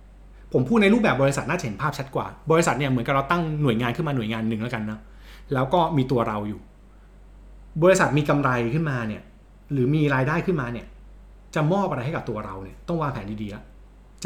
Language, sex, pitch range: Thai, male, 120-160 Hz